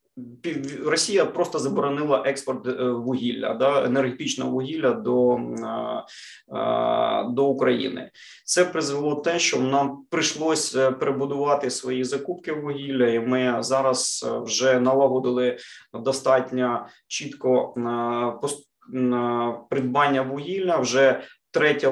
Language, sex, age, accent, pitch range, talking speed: Ukrainian, male, 20-39, native, 125-145 Hz, 90 wpm